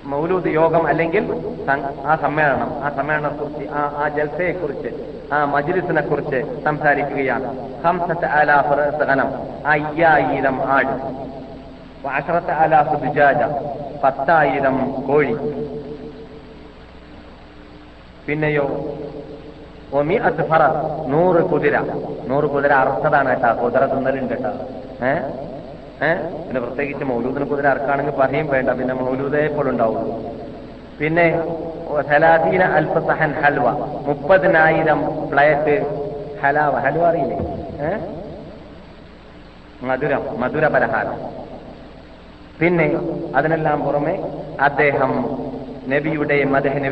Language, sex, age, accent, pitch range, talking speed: Malayalam, male, 30-49, native, 135-160 Hz, 70 wpm